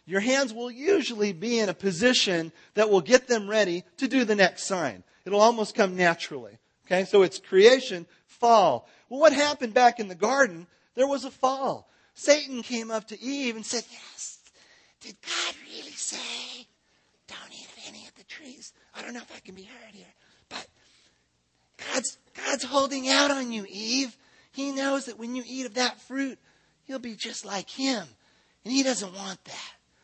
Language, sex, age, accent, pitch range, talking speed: English, male, 40-59, American, 170-245 Hz, 190 wpm